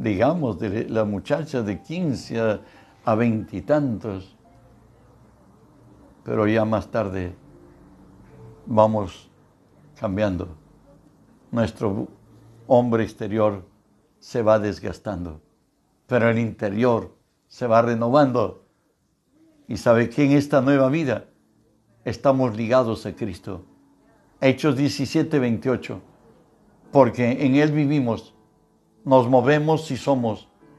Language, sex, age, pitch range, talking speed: Spanish, male, 60-79, 110-145 Hz, 95 wpm